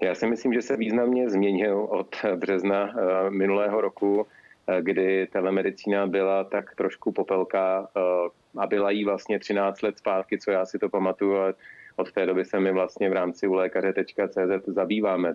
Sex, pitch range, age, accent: male, 90-100 Hz, 30-49, native